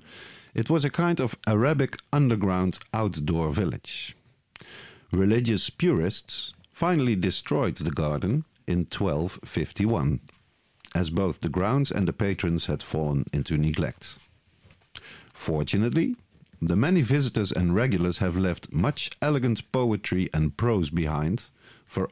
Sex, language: male, Dutch